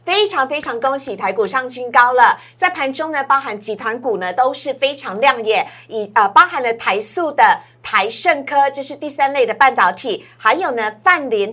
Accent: American